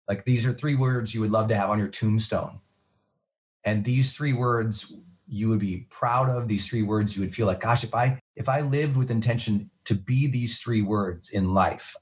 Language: English